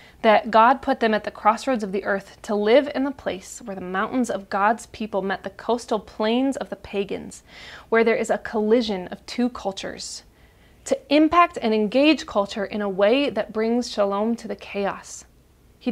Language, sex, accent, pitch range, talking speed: English, female, American, 200-245 Hz, 190 wpm